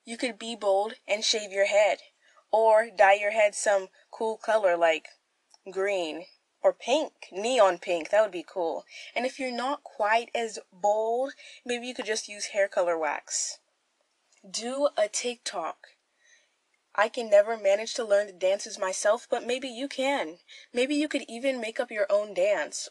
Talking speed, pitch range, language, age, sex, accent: 170 wpm, 200-275 Hz, English, 10-29, female, American